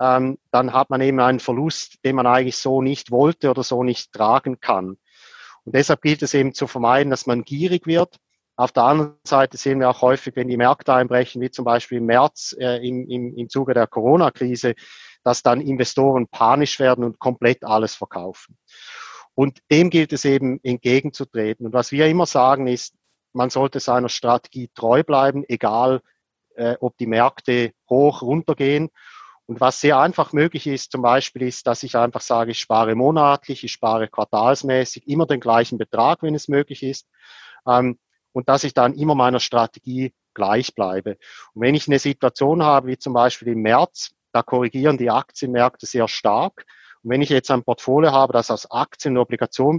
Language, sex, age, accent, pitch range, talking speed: German, male, 40-59, German, 120-140 Hz, 185 wpm